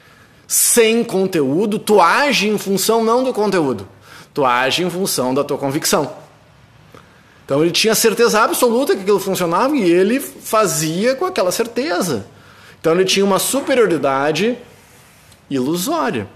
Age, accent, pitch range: 20-39, Brazilian, 140-205 Hz